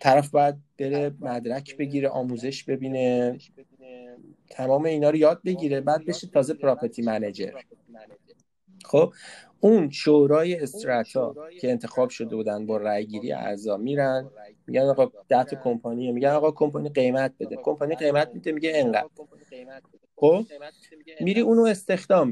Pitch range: 125-175 Hz